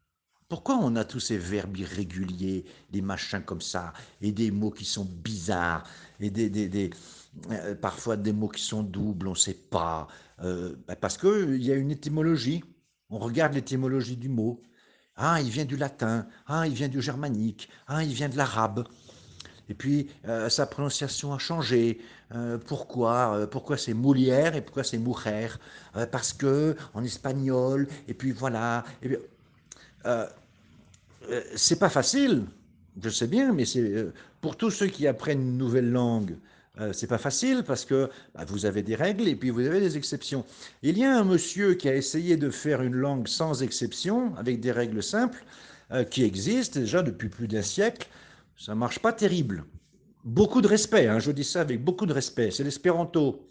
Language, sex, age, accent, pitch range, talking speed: French, male, 50-69, French, 110-145 Hz, 190 wpm